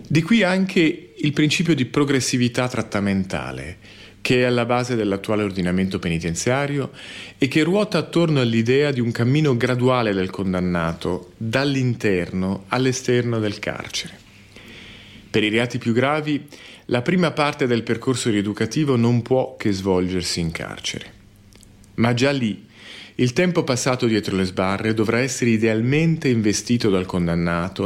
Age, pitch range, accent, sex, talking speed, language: 40-59, 95-125 Hz, native, male, 135 wpm, Italian